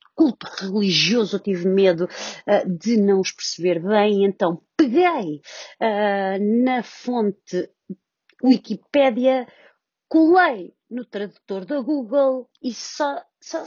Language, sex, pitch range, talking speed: Portuguese, female, 200-285 Hz, 95 wpm